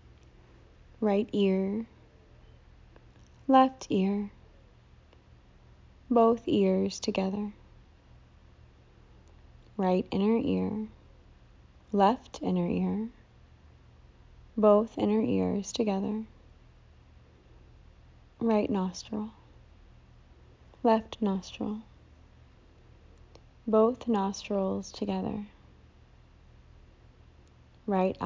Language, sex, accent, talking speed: English, female, American, 55 wpm